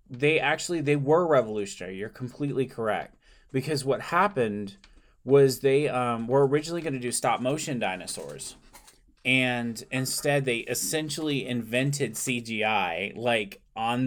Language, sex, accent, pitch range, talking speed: English, male, American, 105-130 Hz, 125 wpm